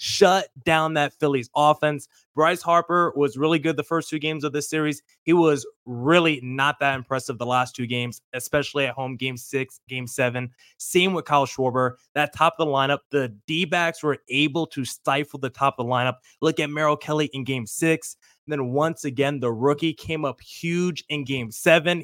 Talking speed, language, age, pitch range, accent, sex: 195 wpm, English, 20-39, 135-170 Hz, American, male